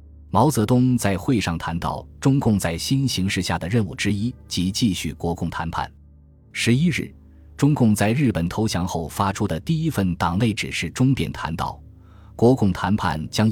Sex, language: male, Chinese